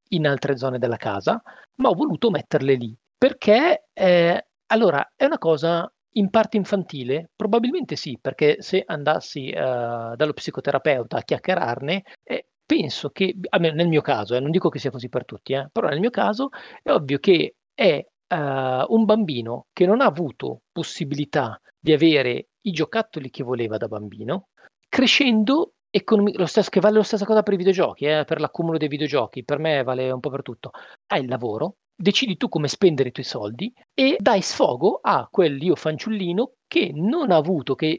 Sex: male